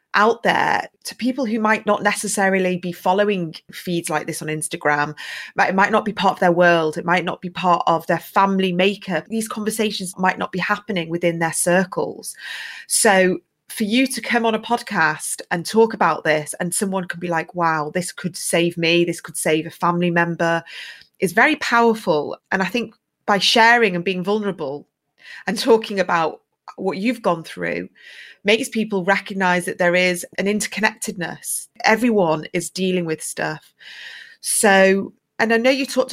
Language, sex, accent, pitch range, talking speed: English, female, British, 170-215 Hz, 180 wpm